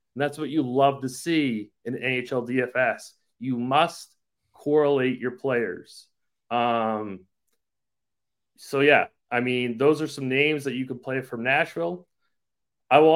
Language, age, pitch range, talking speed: English, 30-49, 115-145 Hz, 145 wpm